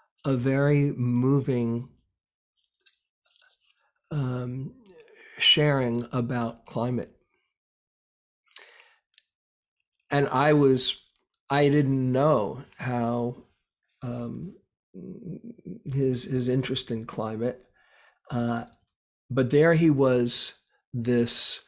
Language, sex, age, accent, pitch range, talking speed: English, male, 50-69, American, 120-140 Hz, 70 wpm